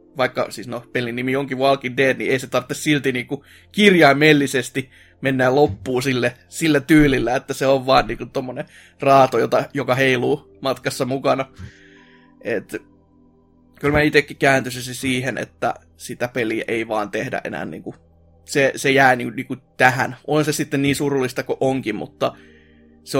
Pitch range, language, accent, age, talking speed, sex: 110-145 Hz, Finnish, native, 20-39, 170 wpm, male